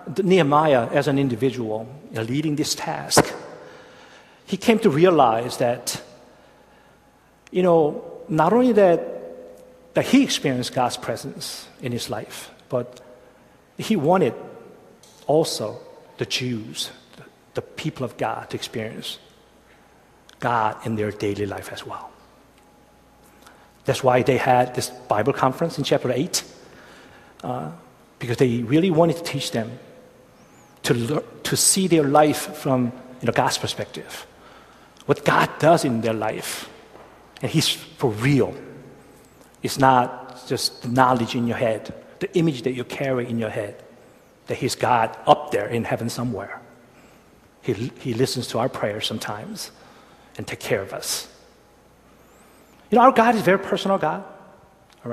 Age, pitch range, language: 50-69, 120-160 Hz, Korean